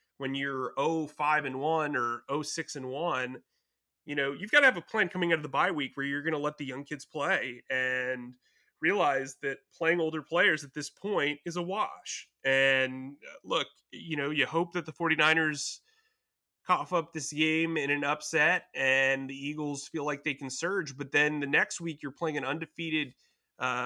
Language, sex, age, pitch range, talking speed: English, male, 30-49, 135-160 Hz, 200 wpm